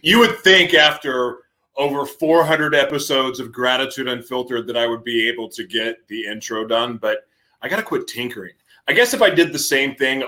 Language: English